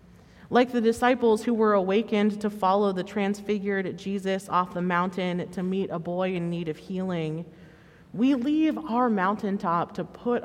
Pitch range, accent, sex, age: 170-215 Hz, American, female, 30-49